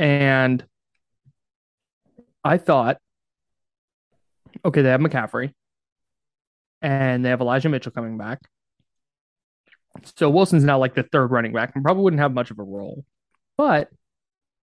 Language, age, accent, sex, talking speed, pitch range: English, 20-39, American, male, 125 wpm, 120-150 Hz